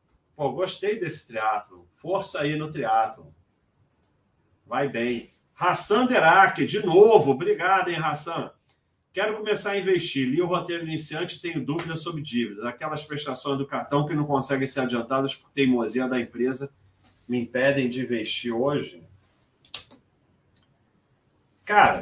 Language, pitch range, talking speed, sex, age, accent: Portuguese, 120-180 Hz, 130 wpm, male, 40-59, Brazilian